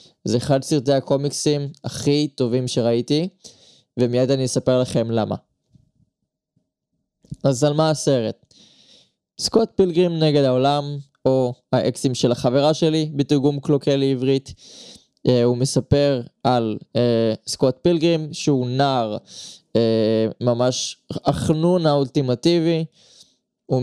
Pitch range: 125-150 Hz